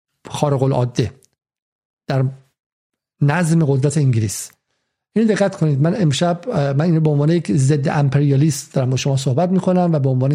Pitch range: 135-160 Hz